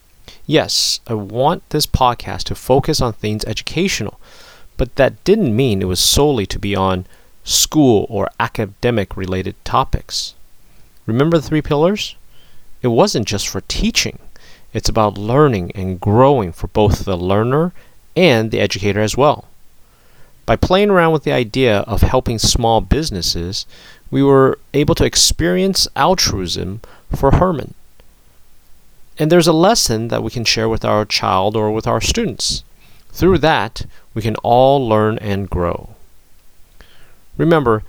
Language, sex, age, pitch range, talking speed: English, male, 30-49, 105-140 Hz, 140 wpm